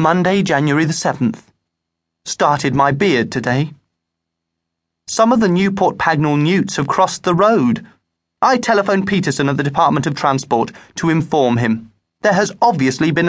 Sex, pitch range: male, 115-170 Hz